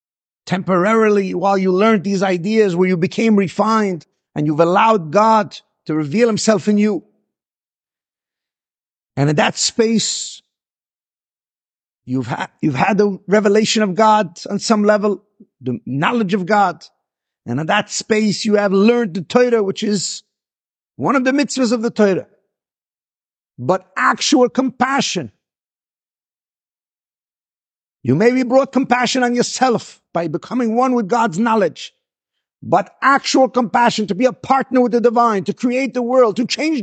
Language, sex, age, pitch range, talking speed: English, male, 50-69, 195-250 Hz, 140 wpm